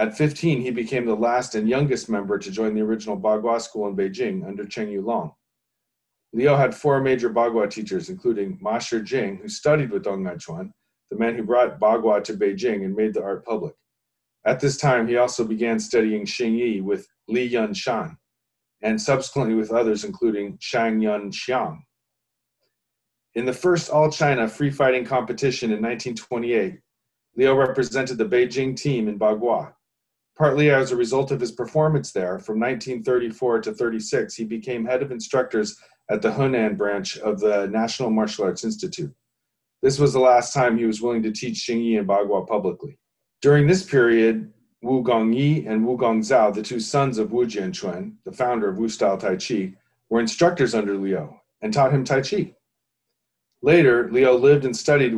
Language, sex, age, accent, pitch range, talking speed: English, male, 40-59, American, 110-135 Hz, 180 wpm